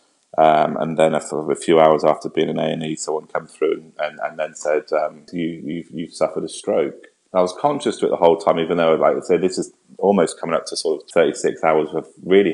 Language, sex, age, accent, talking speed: English, male, 20-39, British, 260 wpm